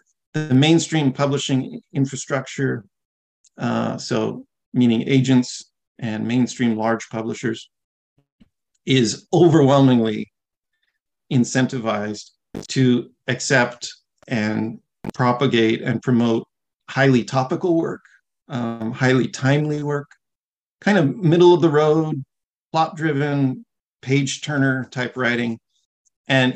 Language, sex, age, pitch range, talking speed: English, male, 50-69, 120-140 Hz, 95 wpm